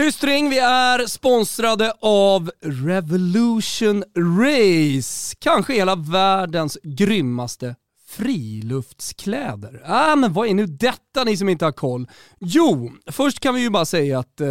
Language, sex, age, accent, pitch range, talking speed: Swedish, male, 30-49, native, 150-225 Hz, 130 wpm